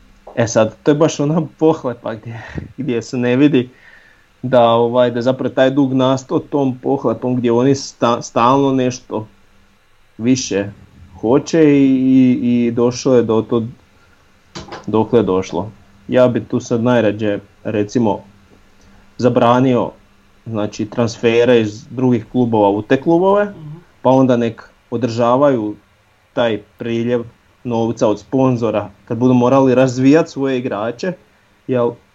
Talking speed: 125 wpm